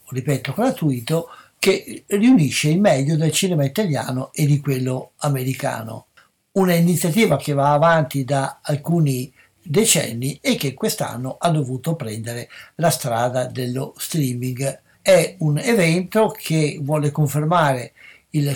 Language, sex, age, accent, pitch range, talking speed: Italian, male, 60-79, native, 135-165 Hz, 125 wpm